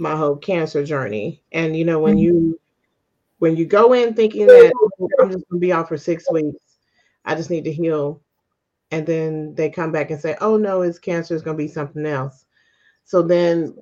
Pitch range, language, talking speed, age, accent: 155-210 Hz, English, 215 wpm, 40-59, American